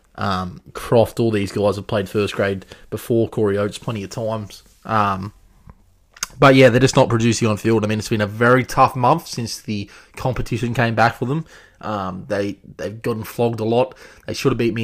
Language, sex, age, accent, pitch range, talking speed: English, male, 20-39, Australian, 105-120 Hz, 210 wpm